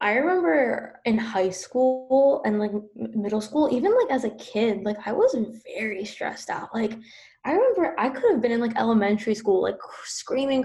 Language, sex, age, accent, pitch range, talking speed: English, female, 10-29, American, 210-250 Hz, 185 wpm